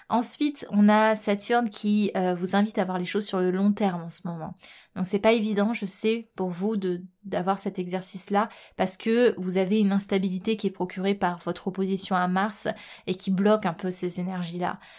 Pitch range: 185-215 Hz